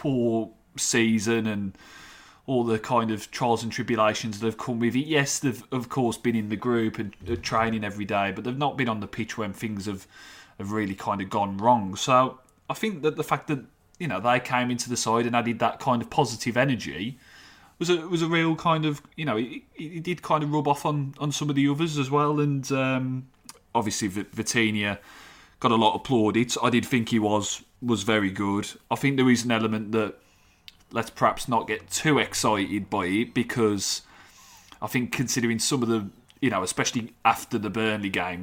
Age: 20-39